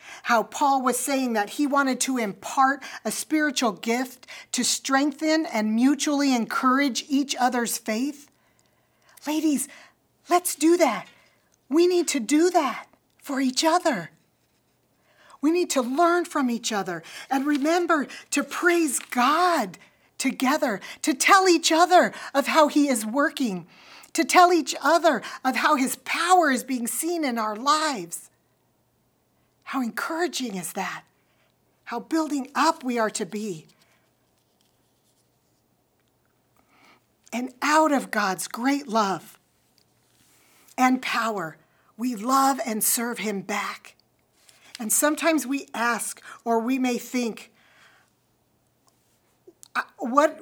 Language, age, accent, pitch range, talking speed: English, 50-69, American, 235-310 Hz, 120 wpm